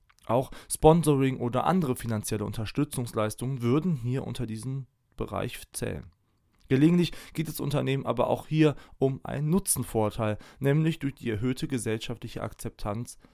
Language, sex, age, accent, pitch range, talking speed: German, male, 20-39, German, 105-130 Hz, 125 wpm